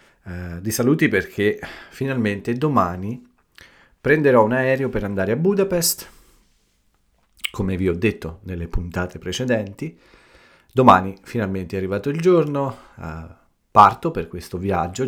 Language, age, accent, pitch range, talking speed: Italian, 40-59, native, 90-115 Hz, 115 wpm